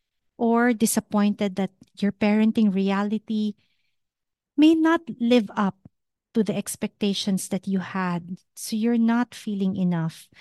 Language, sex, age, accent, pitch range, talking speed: English, female, 50-69, Filipino, 180-230 Hz, 120 wpm